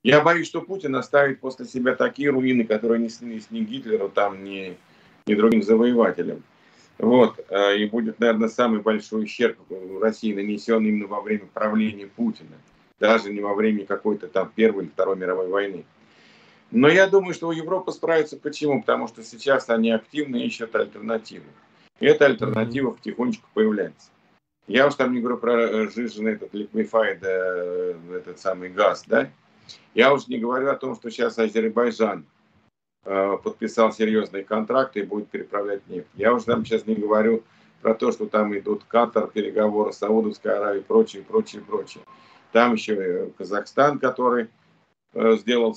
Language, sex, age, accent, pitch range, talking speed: Russian, male, 50-69, native, 105-135 Hz, 160 wpm